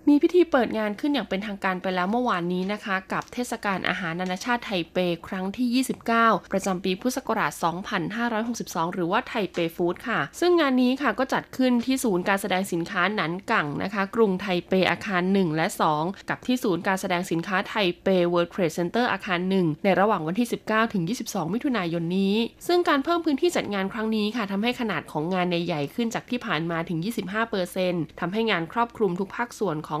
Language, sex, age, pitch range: Thai, female, 20-39, 180-230 Hz